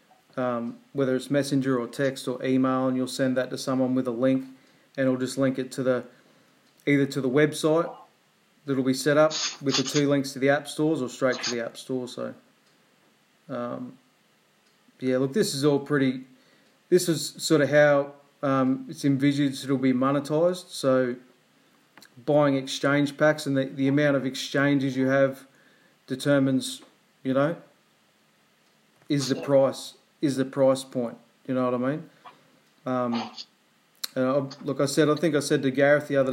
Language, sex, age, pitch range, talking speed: English, male, 30-49, 130-150 Hz, 180 wpm